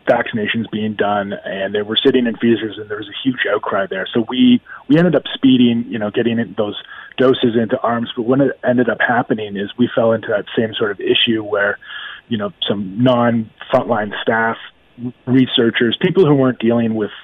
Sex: male